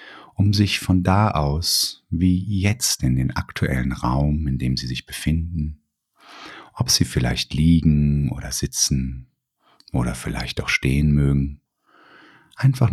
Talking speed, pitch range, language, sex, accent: 130 wpm, 65-80 Hz, German, male, German